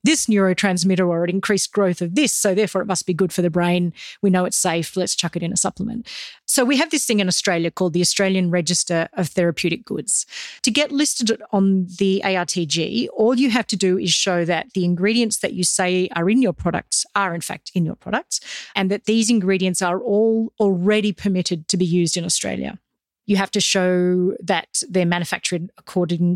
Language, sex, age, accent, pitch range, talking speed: English, female, 30-49, Australian, 175-215 Hz, 205 wpm